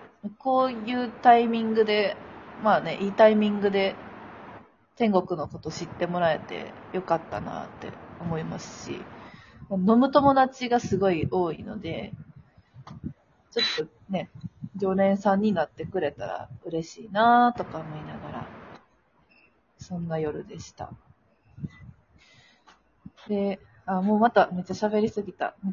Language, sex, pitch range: Japanese, female, 180-225 Hz